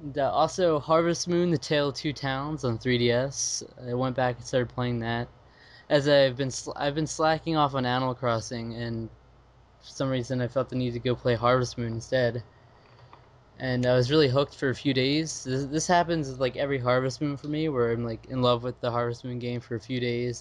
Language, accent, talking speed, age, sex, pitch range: English, American, 220 wpm, 20-39, male, 120-135 Hz